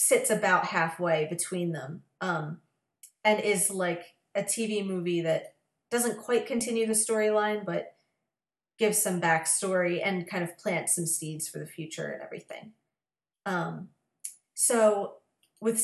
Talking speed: 135 wpm